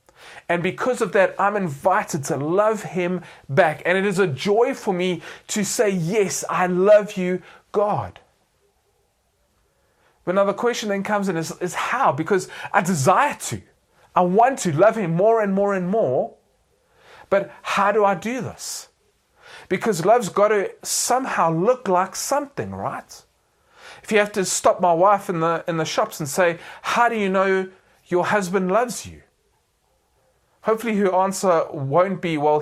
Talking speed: 165 wpm